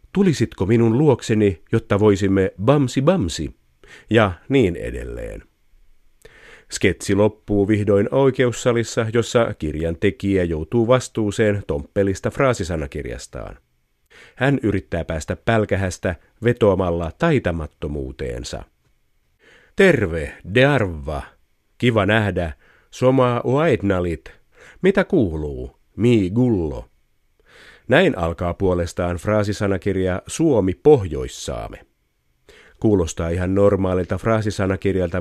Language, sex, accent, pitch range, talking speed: Finnish, male, native, 85-115 Hz, 85 wpm